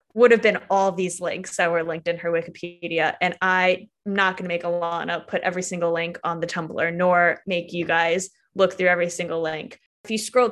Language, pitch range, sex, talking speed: English, 175-225 Hz, female, 215 wpm